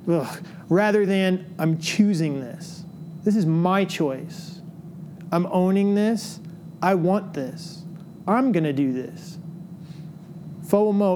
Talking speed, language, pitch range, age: 115 wpm, English, 160-185 Hz, 30-49